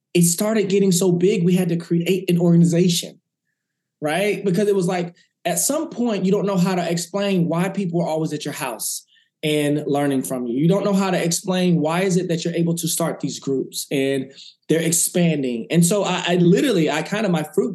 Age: 20-39